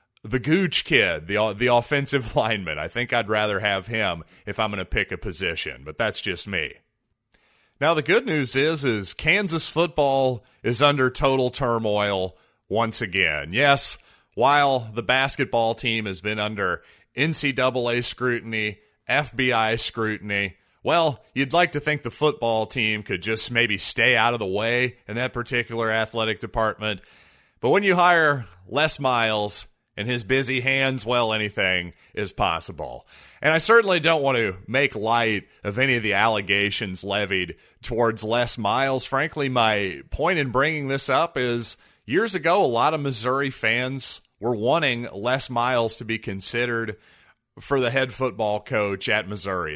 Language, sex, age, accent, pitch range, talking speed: English, male, 30-49, American, 105-135 Hz, 160 wpm